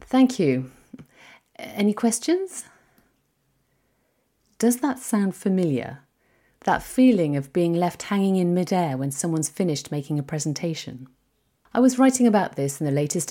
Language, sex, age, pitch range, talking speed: English, female, 40-59, 145-215 Hz, 135 wpm